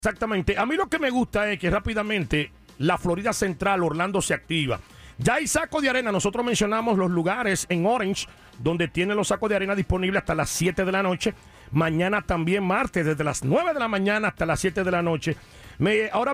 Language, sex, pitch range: English, male, 185-230 Hz